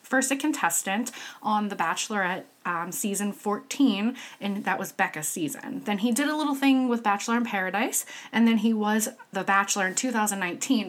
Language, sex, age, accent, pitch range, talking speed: English, female, 20-39, American, 185-220 Hz, 175 wpm